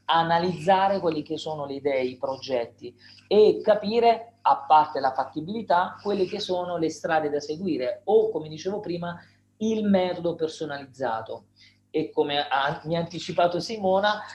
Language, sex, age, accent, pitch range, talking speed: Italian, male, 40-59, native, 145-190 Hz, 140 wpm